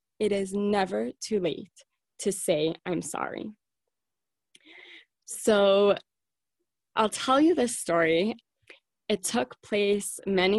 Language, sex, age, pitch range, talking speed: English, female, 20-39, 180-215 Hz, 110 wpm